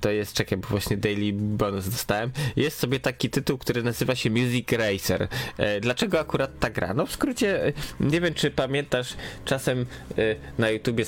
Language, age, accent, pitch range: Polish, 20-39, native, 105-130 Hz